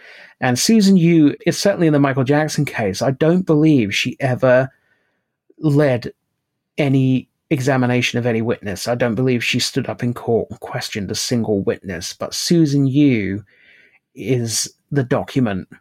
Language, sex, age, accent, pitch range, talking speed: English, male, 30-49, British, 110-140 Hz, 150 wpm